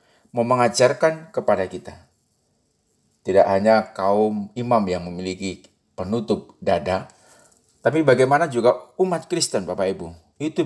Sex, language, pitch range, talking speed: male, Indonesian, 105-160 Hz, 105 wpm